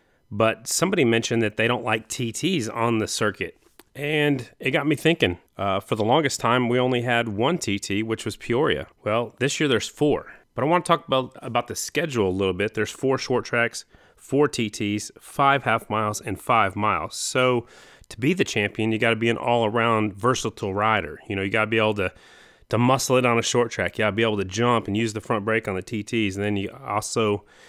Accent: American